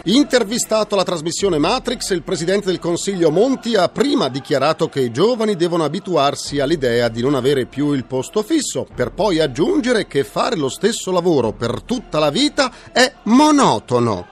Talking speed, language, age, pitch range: 165 wpm, Italian, 40-59, 160-240 Hz